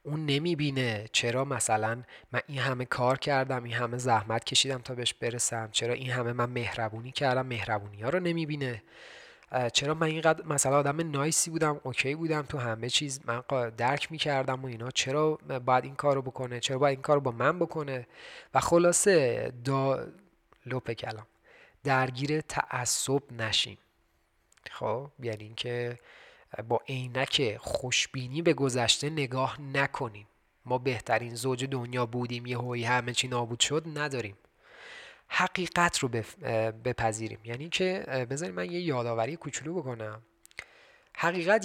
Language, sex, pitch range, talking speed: Persian, male, 120-150 Hz, 145 wpm